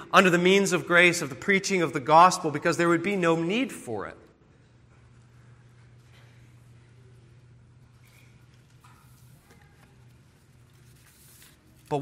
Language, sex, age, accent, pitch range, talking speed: English, male, 40-59, American, 120-185 Hz, 100 wpm